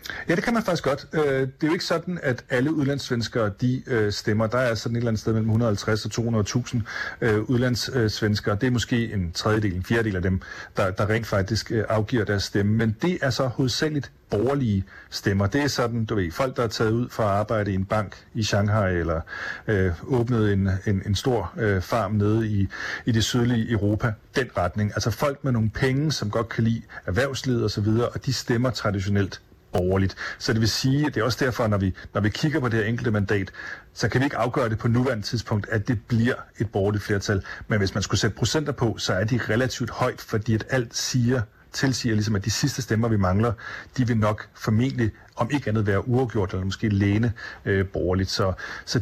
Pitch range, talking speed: 105-125 Hz, 210 wpm